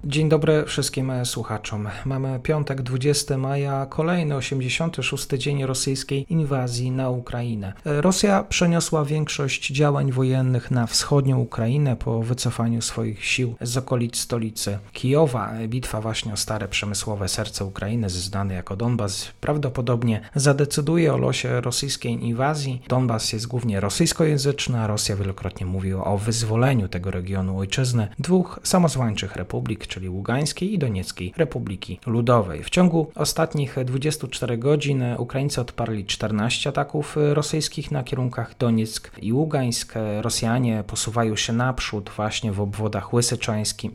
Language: Polish